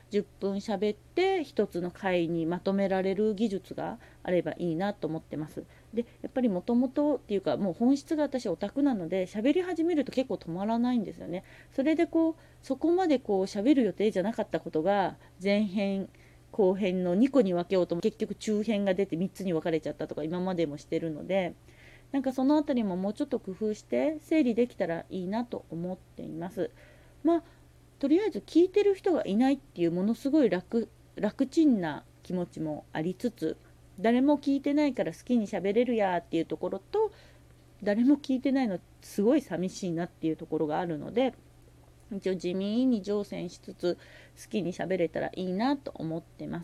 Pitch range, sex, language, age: 180-270 Hz, female, Japanese, 30-49